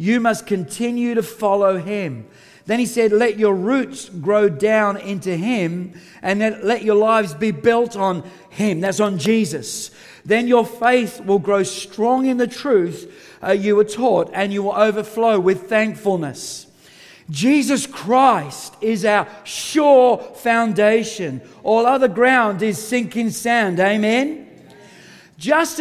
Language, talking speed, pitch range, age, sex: English, 145 wpm, 205-250 Hz, 50-69, male